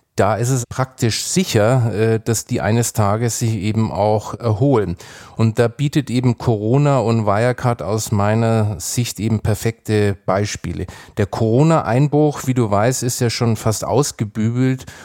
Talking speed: 145 wpm